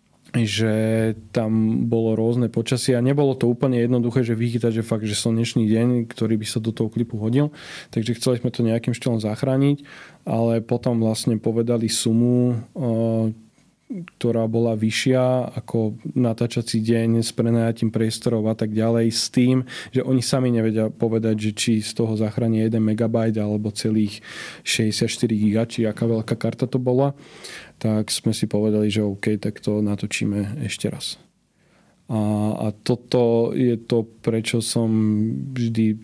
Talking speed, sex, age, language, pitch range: 155 wpm, male, 20-39, Slovak, 110-125 Hz